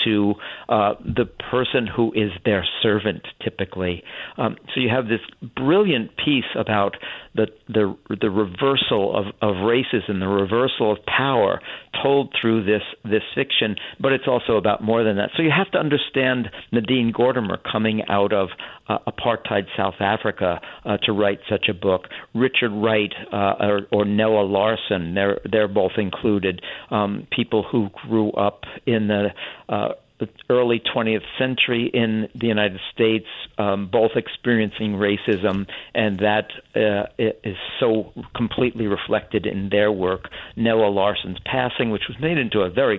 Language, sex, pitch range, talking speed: English, male, 100-115 Hz, 155 wpm